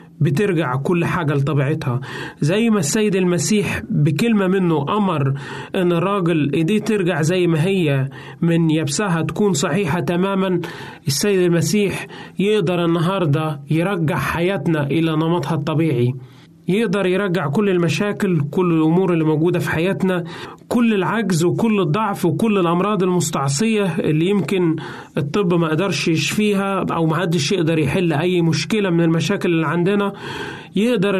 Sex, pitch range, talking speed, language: male, 160-195 Hz, 125 wpm, Arabic